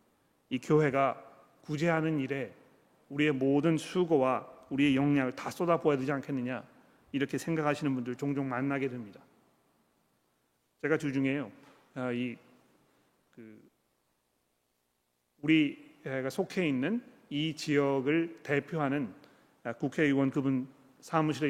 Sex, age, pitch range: male, 40-59, 135-165 Hz